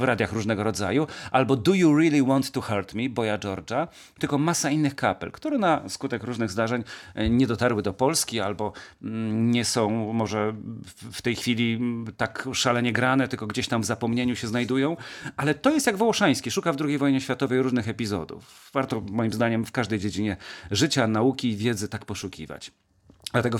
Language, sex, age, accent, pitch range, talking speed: Polish, male, 40-59, native, 110-150 Hz, 175 wpm